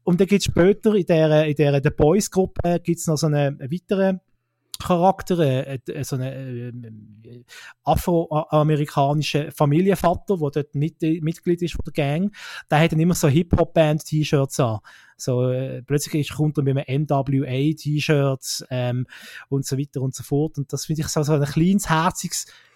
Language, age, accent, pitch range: German, 20-39, Austrian, 135-165 Hz